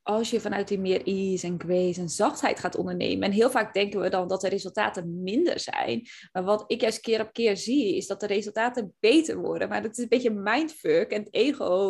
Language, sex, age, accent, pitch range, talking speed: Dutch, female, 20-39, Dutch, 195-245 Hz, 230 wpm